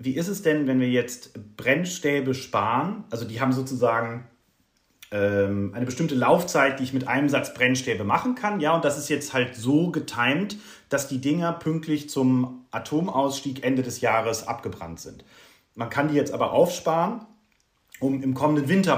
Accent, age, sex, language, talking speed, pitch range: German, 30-49, male, German, 170 wpm, 120-150 Hz